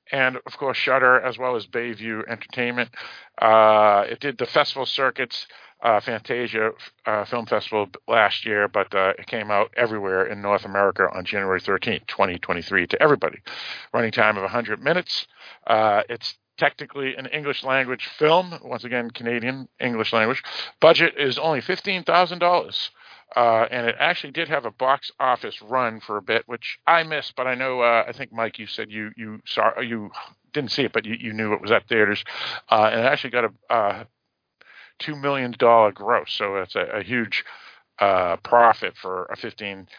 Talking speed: 175 wpm